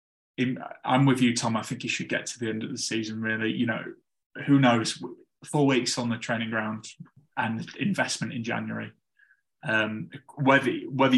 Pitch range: 110-130 Hz